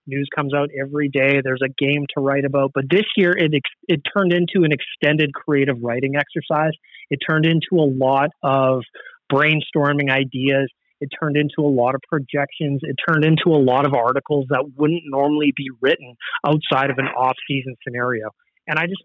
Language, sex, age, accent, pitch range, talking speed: English, male, 30-49, American, 140-170 Hz, 185 wpm